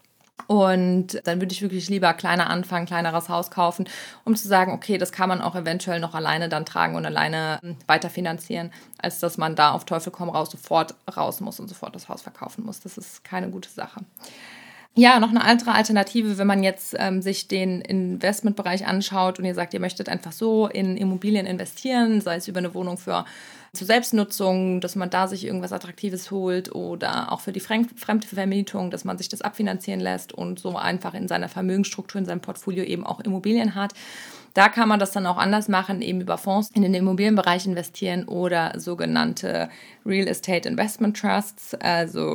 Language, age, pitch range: German, 20-39, 180-210 Hz